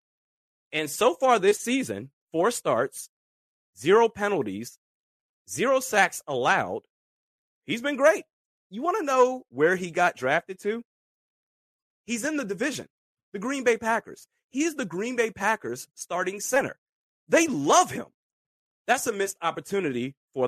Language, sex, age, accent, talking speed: English, male, 30-49, American, 140 wpm